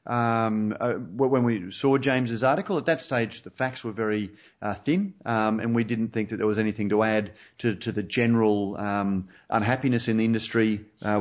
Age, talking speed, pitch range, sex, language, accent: 30-49, 200 wpm, 105-125 Hz, male, English, Australian